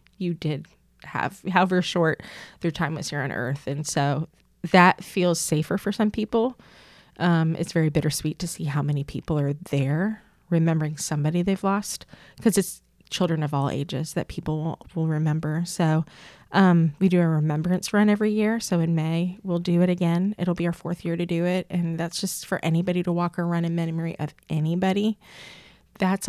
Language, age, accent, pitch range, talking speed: English, 20-39, American, 160-190 Hz, 185 wpm